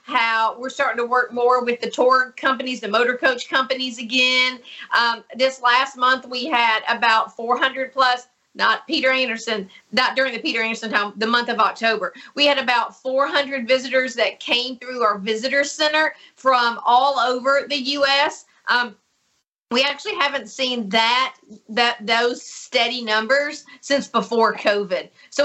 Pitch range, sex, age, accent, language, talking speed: 225-265 Hz, female, 40-59, American, English, 155 wpm